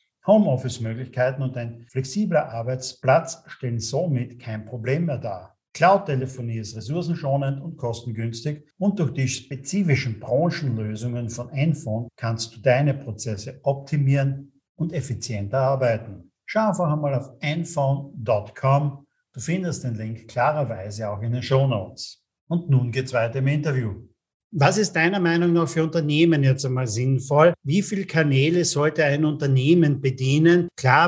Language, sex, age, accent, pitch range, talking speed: German, male, 50-69, German, 135-165 Hz, 135 wpm